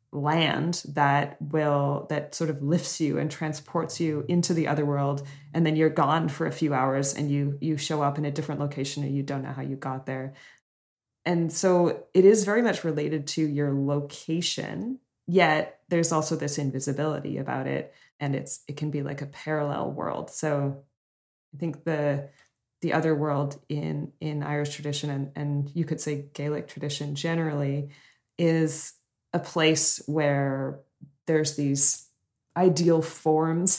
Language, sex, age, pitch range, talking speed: English, female, 20-39, 140-165 Hz, 165 wpm